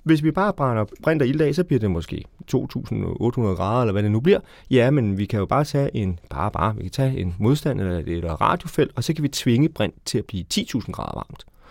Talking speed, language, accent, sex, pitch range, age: 240 wpm, Danish, native, male, 100-140 Hz, 30-49